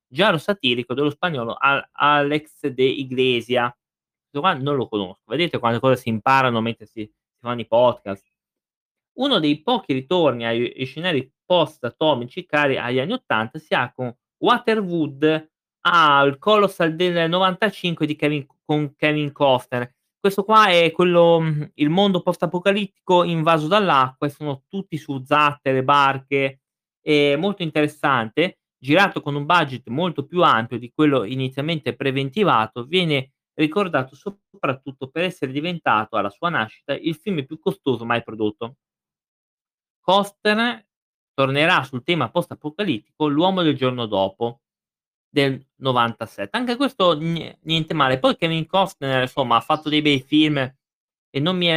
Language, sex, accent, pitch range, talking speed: Italian, male, native, 130-170 Hz, 140 wpm